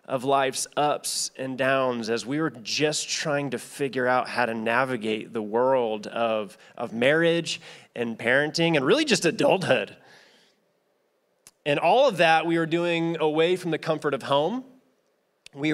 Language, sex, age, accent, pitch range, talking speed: English, male, 20-39, American, 125-155 Hz, 155 wpm